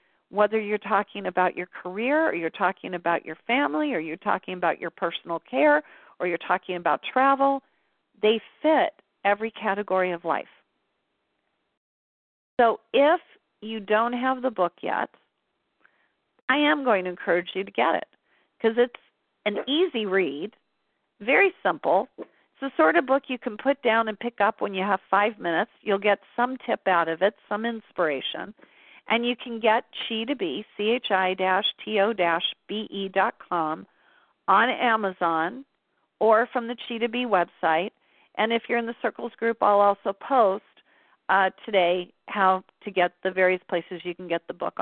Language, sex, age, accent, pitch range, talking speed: English, female, 40-59, American, 185-235 Hz, 170 wpm